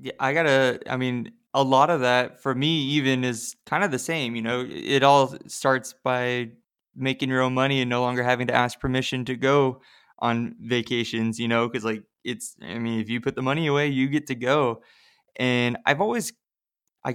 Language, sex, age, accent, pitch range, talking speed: English, male, 20-39, American, 120-135 Hz, 205 wpm